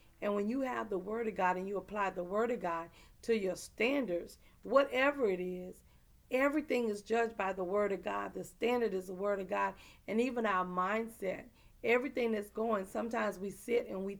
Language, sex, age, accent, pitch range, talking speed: English, female, 40-59, American, 195-235 Hz, 205 wpm